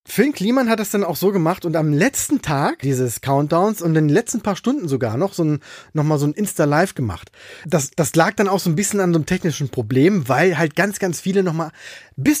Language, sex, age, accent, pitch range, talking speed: German, male, 20-39, German, 135-175 Hz, 245 wpm